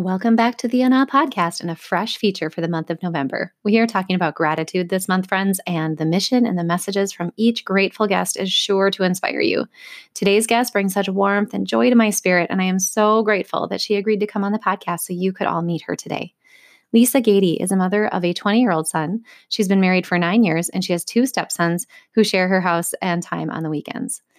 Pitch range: 180-220 Hz